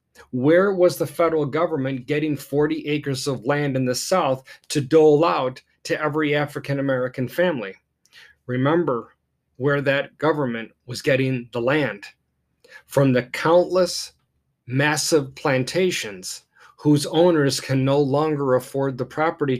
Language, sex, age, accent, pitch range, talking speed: English, male, 40-59, American, 130-155 Hz, 125 wpm